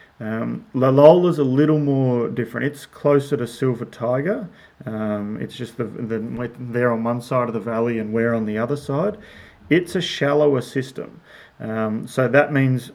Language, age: English, 30-49